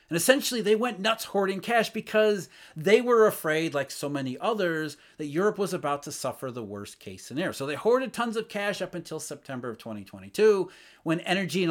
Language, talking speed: English, 200 wpm